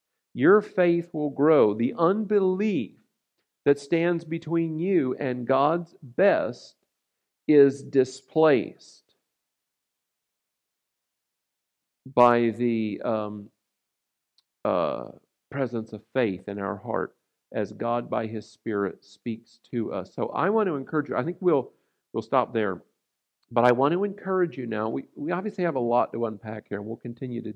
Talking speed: 140 wpm